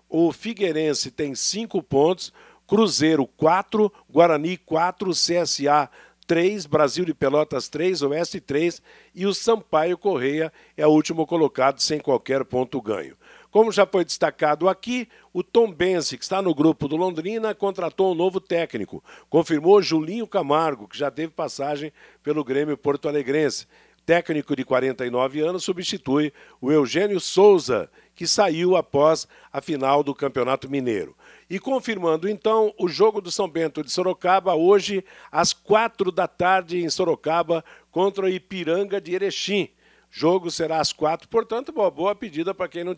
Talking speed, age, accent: 150 wpm, 60-79, Brazilian